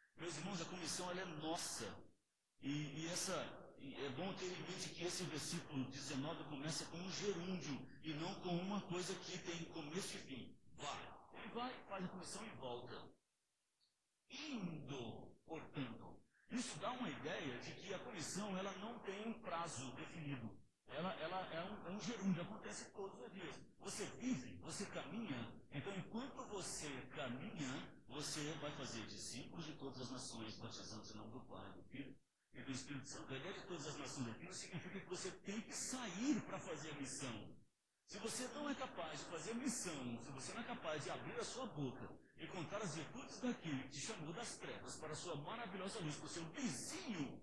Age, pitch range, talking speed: 50-69, 140-195 Hz, 190 wpm